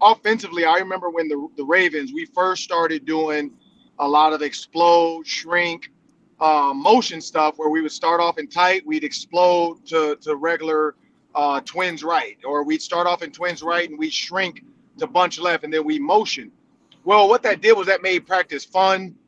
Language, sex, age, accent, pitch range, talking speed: English, male, 30-49, American, 155-200 Hz, 185 wpm